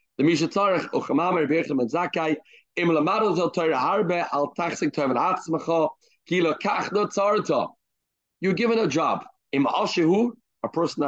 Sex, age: male, 40-59